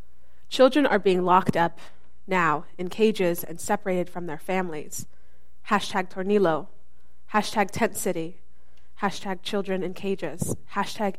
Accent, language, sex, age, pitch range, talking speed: American, English, female, 20-39, 175-215 Hz, 125 wpm